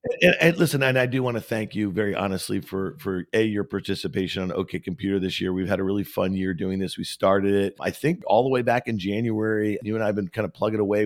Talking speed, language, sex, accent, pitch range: 275 wpm, English, male, American, 95-120 Hz